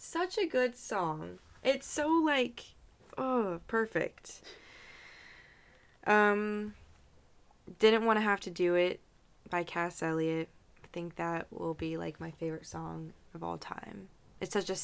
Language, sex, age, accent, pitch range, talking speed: English, female, 20-39, American, 160-205 Hz, 140 wpm